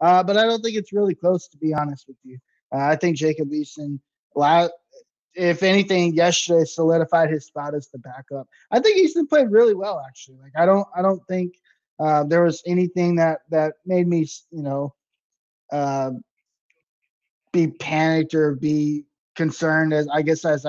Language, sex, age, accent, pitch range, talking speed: English, male, 20-39, American, 140-180 Hz, 175 wpm